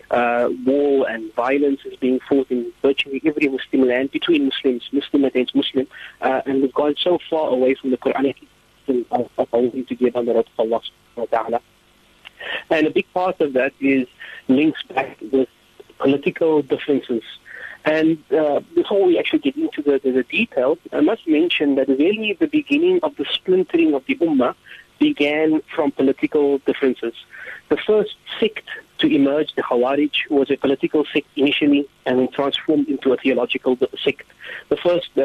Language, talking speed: English, 150 wpm